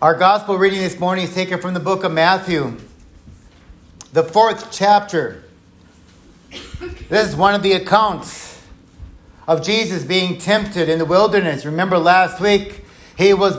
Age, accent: 50-69, American